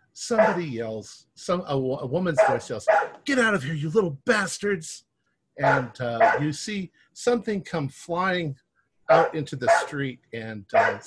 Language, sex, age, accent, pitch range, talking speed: English, male, 50-69, American, 105-150 Hz, 150 wpm